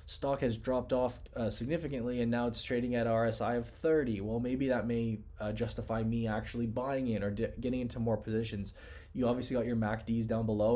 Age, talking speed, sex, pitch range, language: 20-39, 200 wpm, male, 105-125 Hz, English